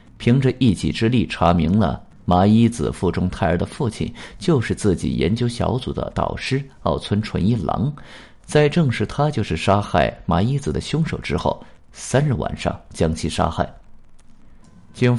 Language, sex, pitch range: Chinese, male, 90-125 Hz